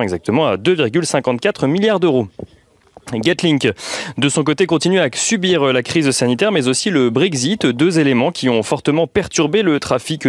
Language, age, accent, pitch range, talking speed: French, 30-49, French, 120-165 Hz, 160 wpm